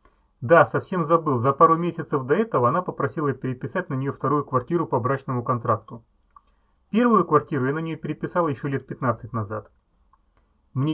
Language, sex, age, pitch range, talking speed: Russian, male, 30-49, 125-160 Hz, 160 wpm